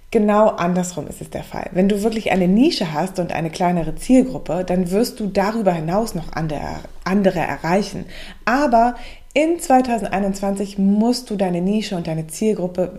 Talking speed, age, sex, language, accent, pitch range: 155 wpm, 20-39, female, German, German, 180-225 Hz